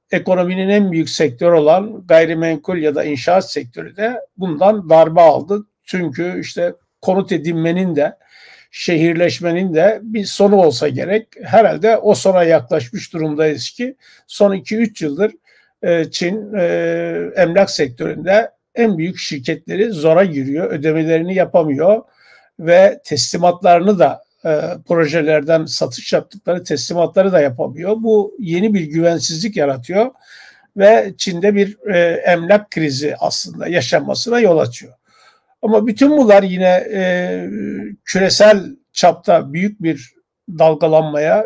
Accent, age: native, 60-79